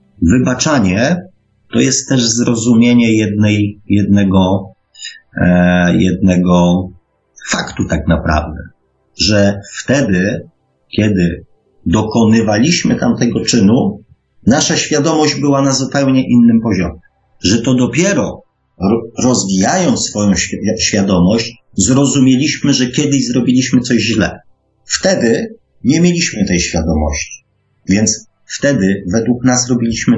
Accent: native